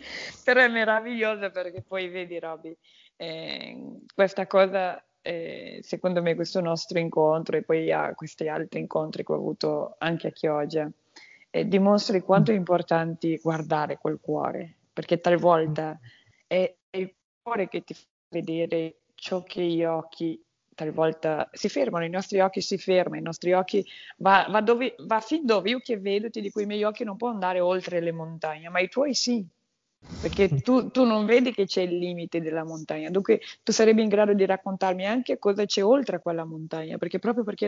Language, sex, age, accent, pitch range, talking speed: Italian, female, 20-39, native, 165-220 Hz, 180 wpm